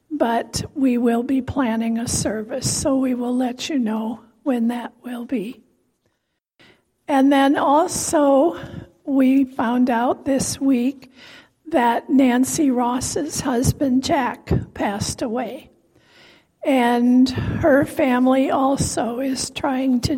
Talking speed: 115 wpm